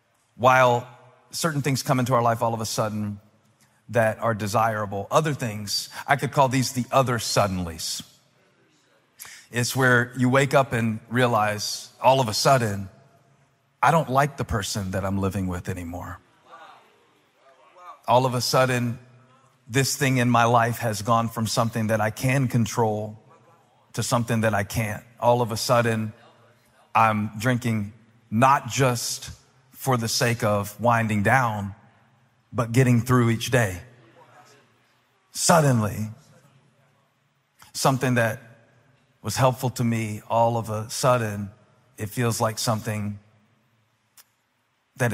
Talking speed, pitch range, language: 135 wpm, 110-130 Hz, English